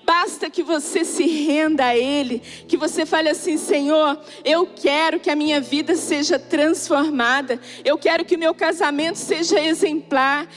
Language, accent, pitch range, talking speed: Portuguese, Brazilian, 275-325 Hz, 160 wpm